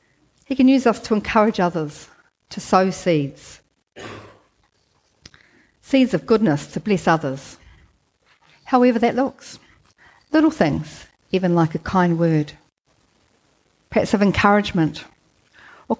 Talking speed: 115 wpm